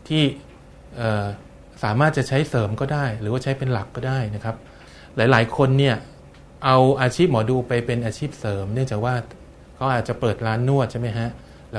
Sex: male